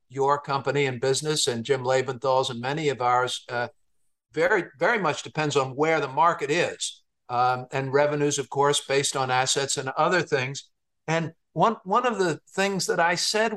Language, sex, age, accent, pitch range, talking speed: English, male, 50-69, American, 140-180 Hz, 180 wpm